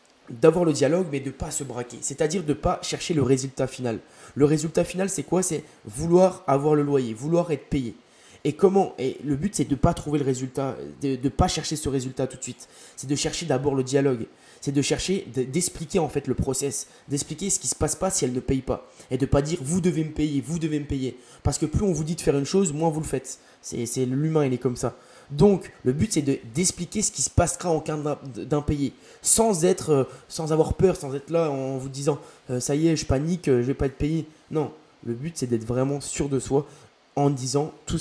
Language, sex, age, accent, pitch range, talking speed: French, male, 20-39, French, 125-155 Hz, 260 wpm